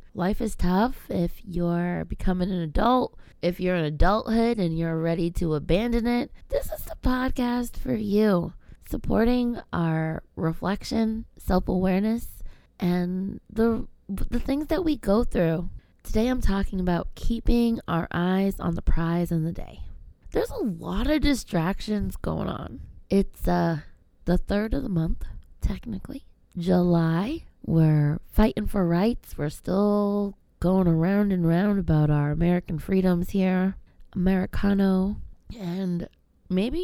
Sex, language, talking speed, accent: female, English, 135 wpm, American